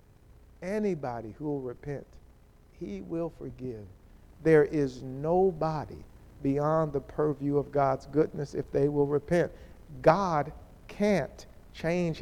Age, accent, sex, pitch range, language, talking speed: 50-69, American, male, 130-175 Hz, English, 115 wpm